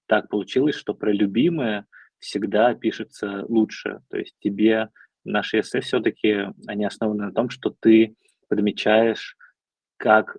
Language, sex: Russian, male